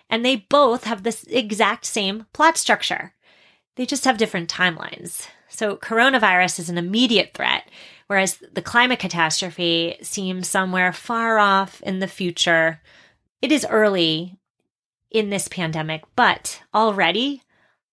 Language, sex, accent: English, female, American